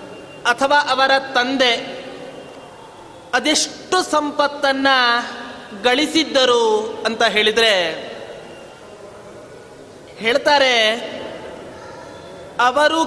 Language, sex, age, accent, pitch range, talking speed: Kannada, male, 30-49, native, 245-300 Hz, 45 wpm